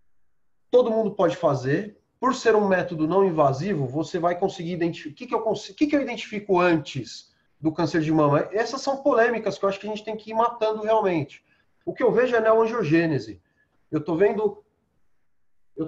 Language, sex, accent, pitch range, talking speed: Portuguese, male, Brazilian, 165-225 Hz, 180 wpm